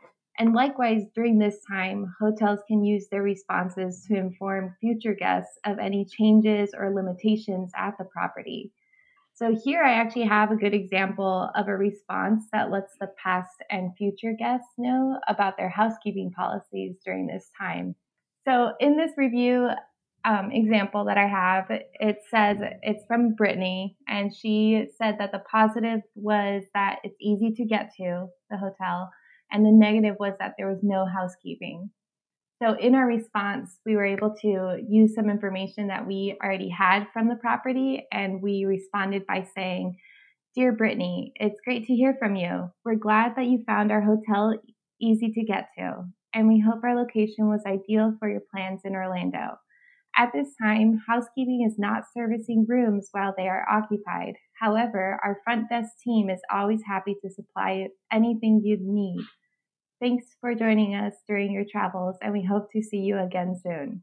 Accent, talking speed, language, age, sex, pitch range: American, 170 wpm, English, 20-39, female, 195-225 Hz